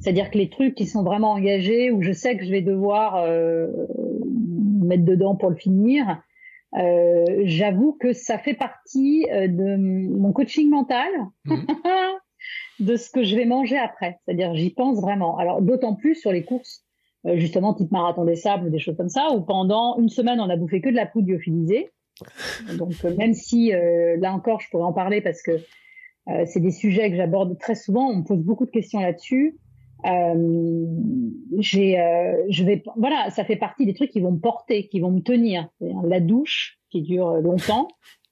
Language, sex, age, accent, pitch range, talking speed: French, female, 40-59, French, 180-240 Hz, 195 wpm